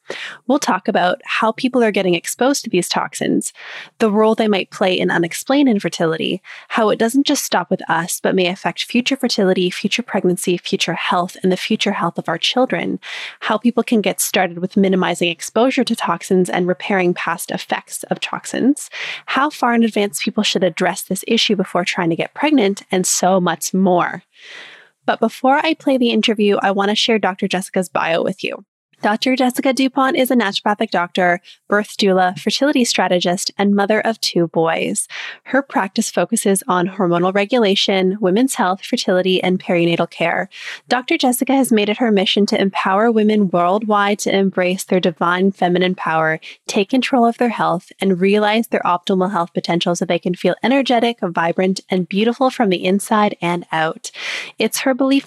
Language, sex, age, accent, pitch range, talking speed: English, female, 20-39, American, 185-240 Hz, 175 wpm